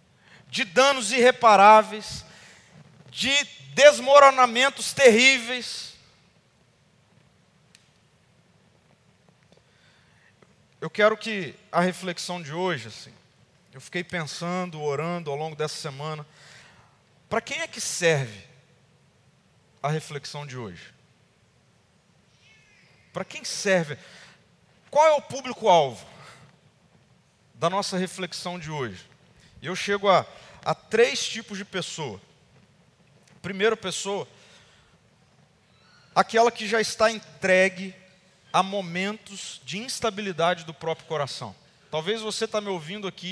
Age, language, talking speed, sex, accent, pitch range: 40-59, Portuguese, 100 wpm, male, Brazilian, 160-225 Hz